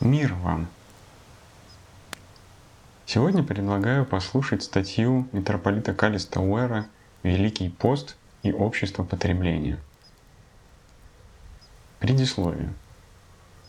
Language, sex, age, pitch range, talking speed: Russian, male, 30-49, 90-120 Hz, 65 wpm